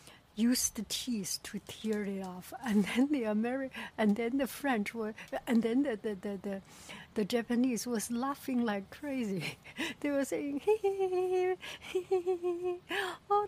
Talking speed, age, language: 145 wpm, 60-79, English